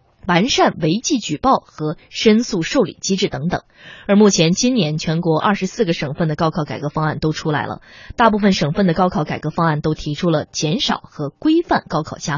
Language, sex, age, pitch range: Chinese, female, 20-39, 155-210 Hz